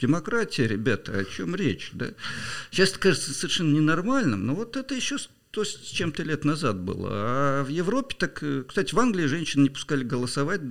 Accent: native